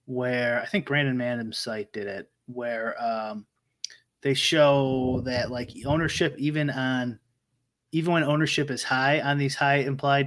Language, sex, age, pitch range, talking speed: English, male, 20-39, 125-145 Hz, 150 wpm